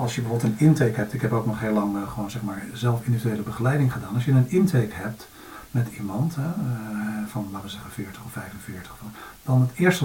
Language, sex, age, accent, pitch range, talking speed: Dutch, male, 50-69, Dutch, 110-130 Hz, 215 wpm